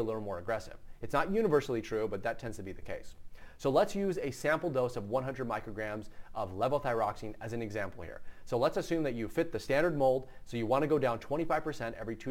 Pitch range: 110-135 Hz